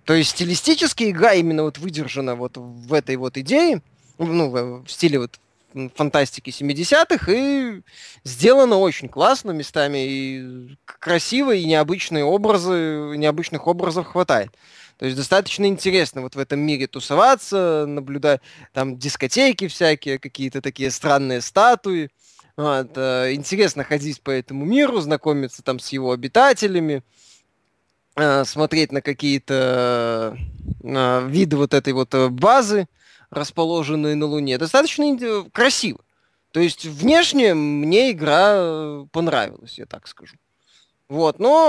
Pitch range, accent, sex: 135-195 Hz, native, male